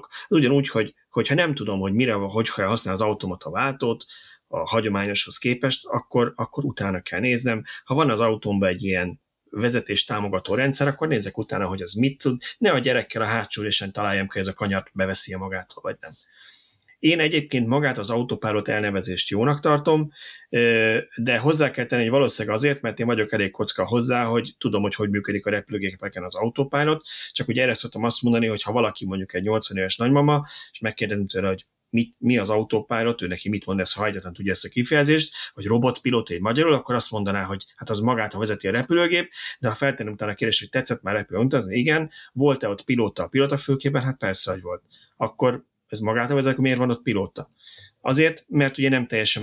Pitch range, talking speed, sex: 105-130 Hz, 200 wpm, male